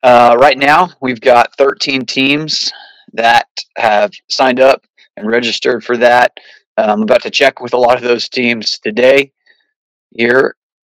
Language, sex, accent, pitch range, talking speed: English, male, American, 120-140 Hz, 155 wpm